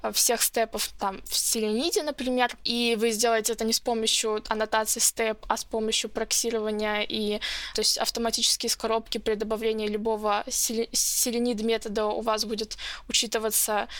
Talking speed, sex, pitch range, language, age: 145 wpm, female, 220-250 Hz, Russian, 20-39